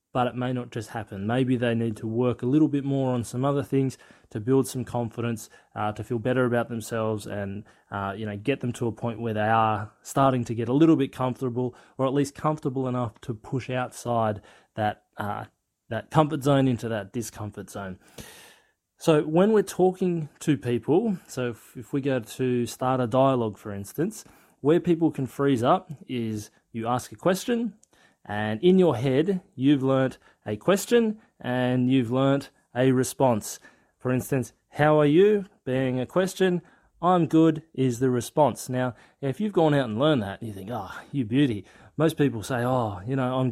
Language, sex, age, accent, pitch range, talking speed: English, male, 20-39, Australian, 115-145 Hz, 190 wpm